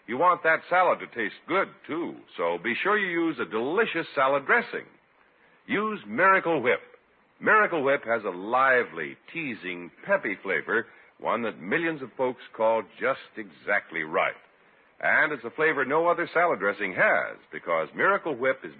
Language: English